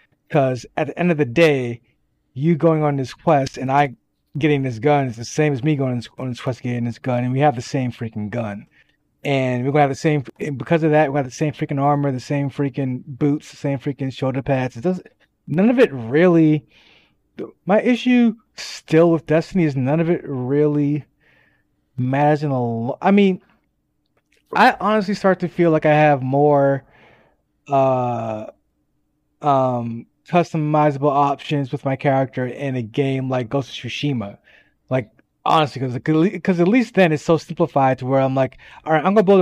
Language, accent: English, American